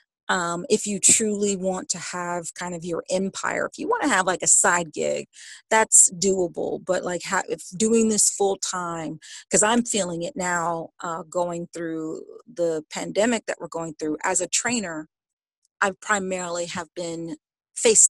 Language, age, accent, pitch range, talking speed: English, 40-59, American, 175-200 Hz, 170 wpm